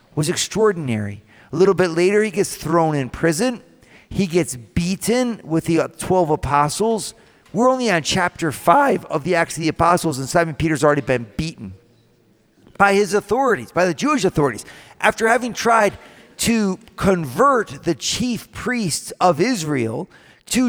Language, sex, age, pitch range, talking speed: English, male, 40-59, 145-195 Hz, 155 wpm